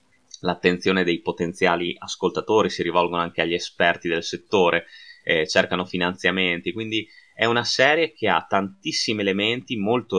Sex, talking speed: male, 135 wpm